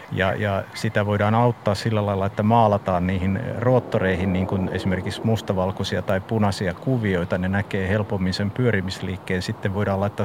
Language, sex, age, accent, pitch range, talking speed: Finnish, male, 50-69, native, 100-120 Hz, 150 wpm